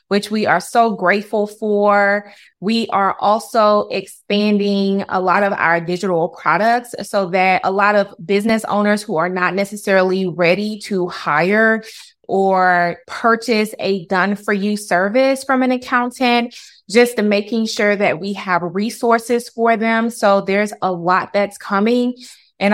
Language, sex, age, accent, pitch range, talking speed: English, female, 20-39, American, 185-220 Hz, 145 wpm